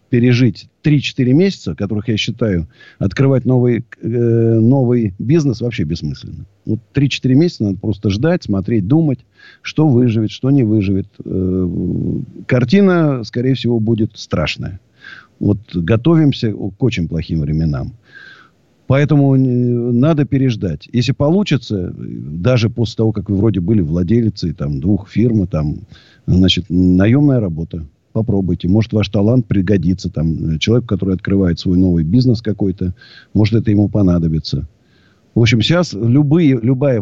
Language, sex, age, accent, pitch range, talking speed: Russian, male, 50-69, native, 100-130 Hz, 120 wpm